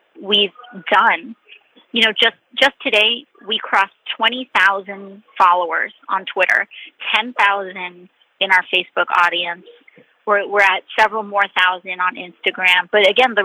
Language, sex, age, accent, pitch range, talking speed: English, female, 30-49, American, 195-240 Hz, 130 wpm